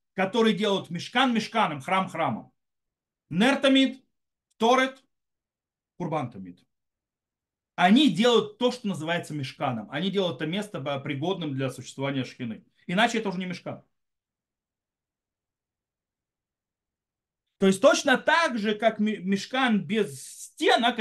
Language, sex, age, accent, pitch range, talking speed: Russian, male, 40-59, native, 140-220 Hz, 105 wpm